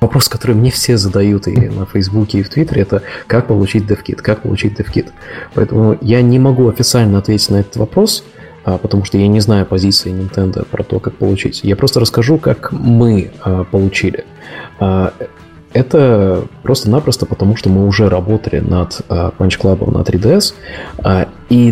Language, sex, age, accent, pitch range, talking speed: Russian, male, 20-39, native, 95-115 Hz, 155 wpm